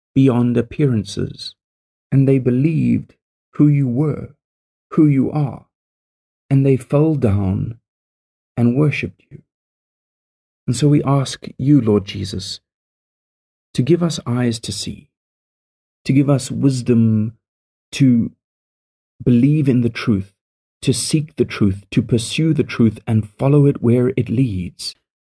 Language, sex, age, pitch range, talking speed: English, male, 40-59, 105-140 Hz, 130 wpm